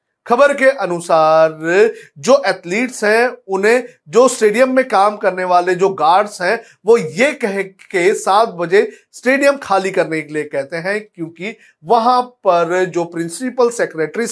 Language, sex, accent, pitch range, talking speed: Hindi, male, native, 160-235 Hz, 145 wpm